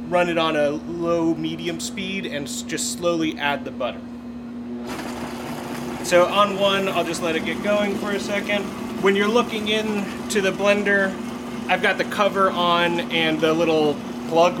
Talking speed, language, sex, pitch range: 165 wpm, English, male, 155-210 Hz